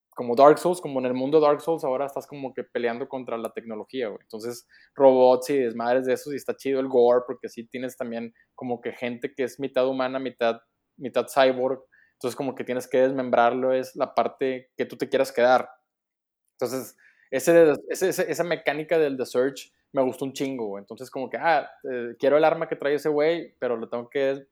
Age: 20-39